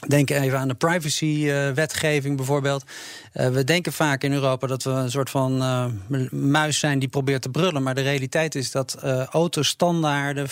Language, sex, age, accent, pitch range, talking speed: Dutch, male, 40-59, Dutch, 130-150 Hz, 185 wpm